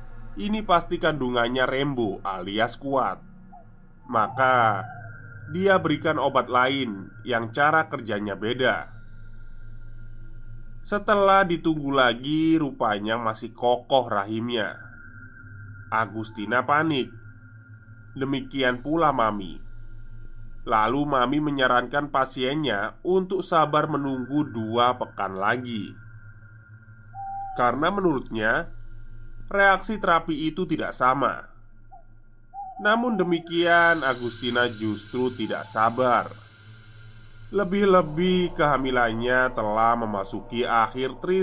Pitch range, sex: 110-150 Hz, male